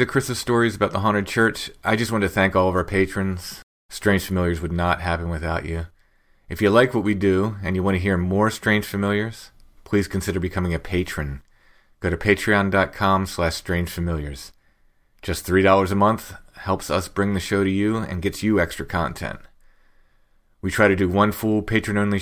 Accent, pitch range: American, 85-100 Hz